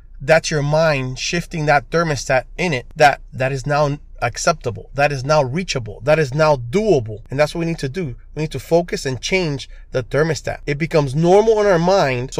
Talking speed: 210 wpm